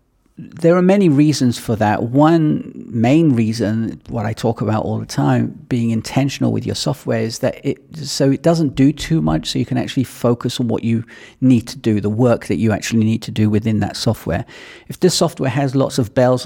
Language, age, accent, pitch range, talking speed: English, 40-59, British, 115-145 Hz, 210 wpm